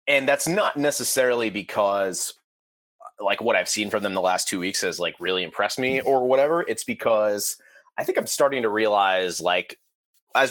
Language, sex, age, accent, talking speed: English, male, 30-49, American, 185 wpm